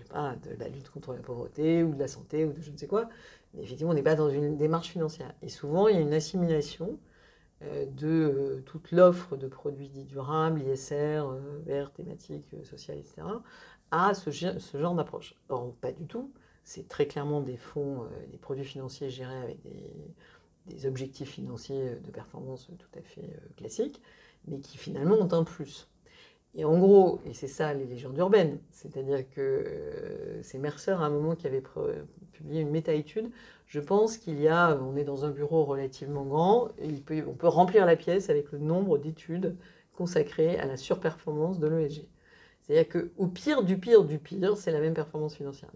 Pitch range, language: 140-175 Hz, French